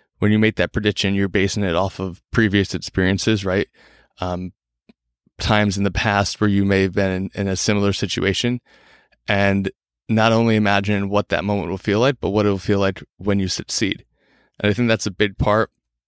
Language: English